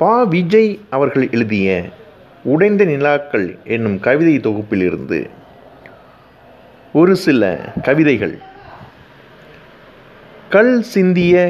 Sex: male